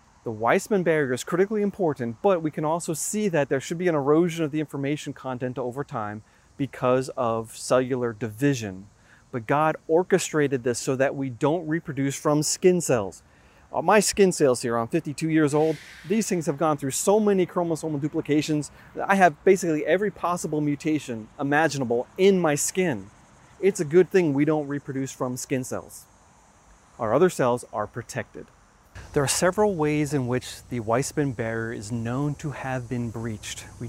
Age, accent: 30-49, American